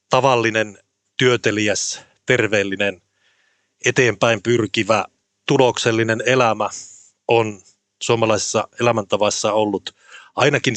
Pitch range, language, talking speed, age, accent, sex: 100-115 Hz, Finnish, 65 wpm, 30-49, native, male